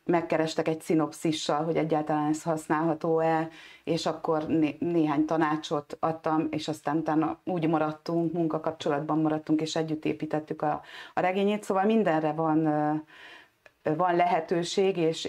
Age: 30-49